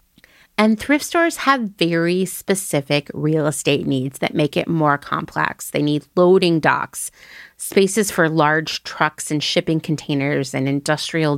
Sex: female